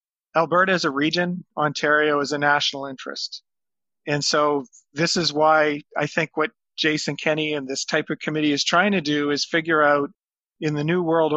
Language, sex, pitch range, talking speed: English, male, 145-160 Hz, 185 wpm